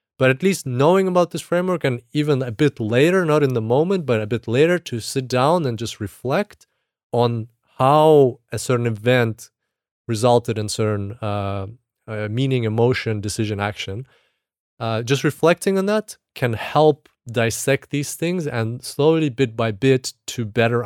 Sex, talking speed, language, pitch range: male, 165 wpm, English, 105-135 Hz